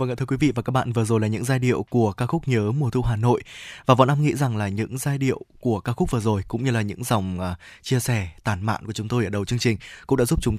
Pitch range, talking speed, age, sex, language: 115-150 Hz, 325 wpm, 20-39, male, Vietnamese